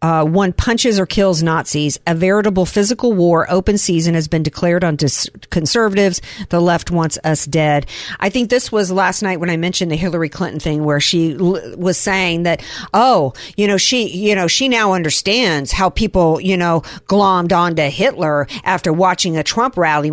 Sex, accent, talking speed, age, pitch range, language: female, American, 185 wpm, 50-69, 160-205 Hz, English